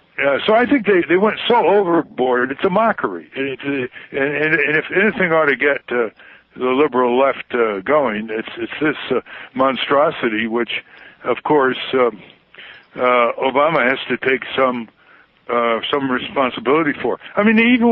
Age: 60-79